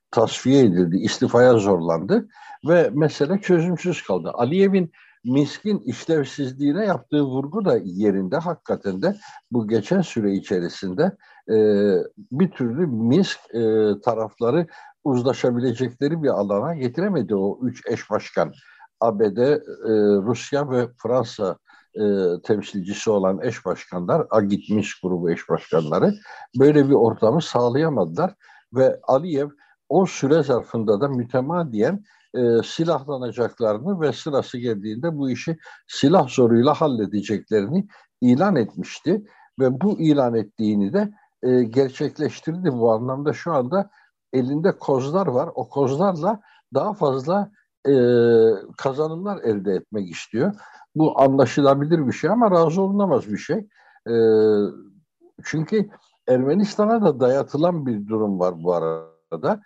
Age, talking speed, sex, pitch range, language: 60-79, 110 wpm, male, 115-175 Hz, Turkish